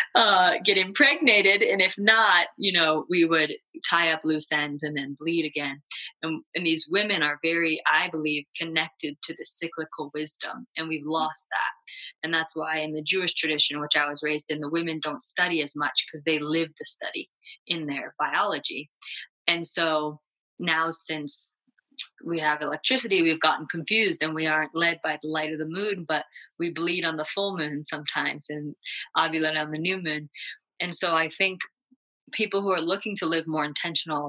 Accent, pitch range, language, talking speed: American, 155-175 Hz, English, 185 wpm